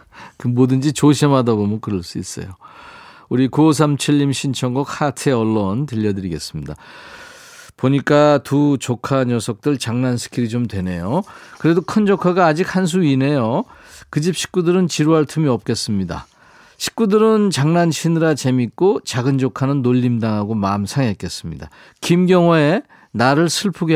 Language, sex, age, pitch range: Korean, male, 40-59, 115-160 Hz